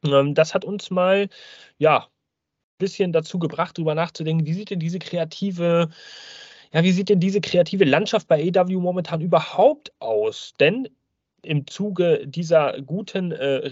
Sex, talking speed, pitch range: male, 150 wpm, 145-190 Hz